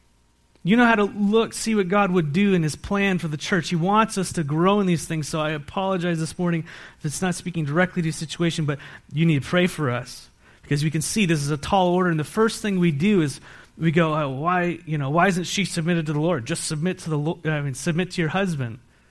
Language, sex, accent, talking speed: English, male, American, 260 wpm